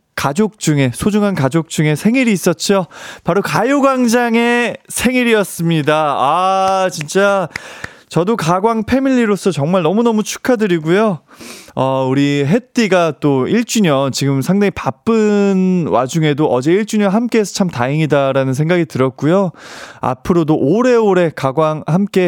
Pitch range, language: 145-215 Hz, Korean